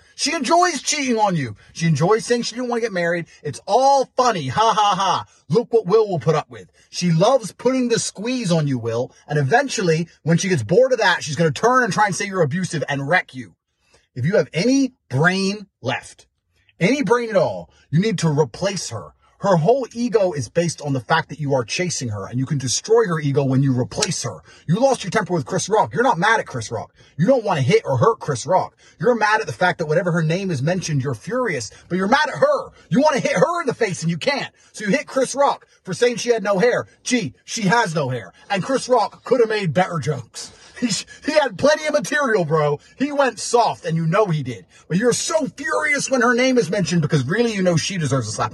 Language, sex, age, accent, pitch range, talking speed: English, male, 30-49, American, 140-230 Hz, 250 wpm